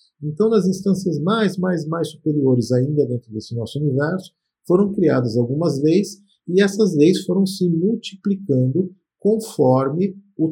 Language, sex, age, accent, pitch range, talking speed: Portuguese, male, 50-69, Brazilian, 125-175 Hz, 135 wpm